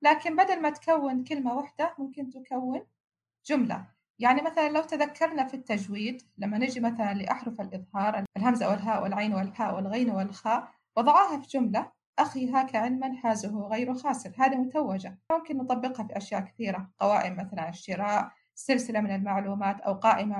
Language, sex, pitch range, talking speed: Arabic, female, 205-265 Hz, 145 wpm